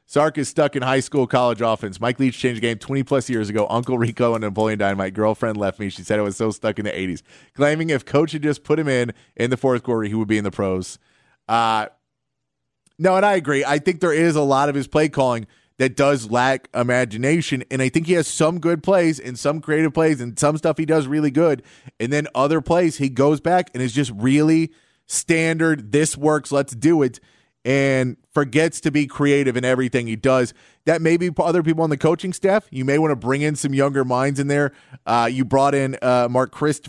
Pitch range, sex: 115-150 Hz, male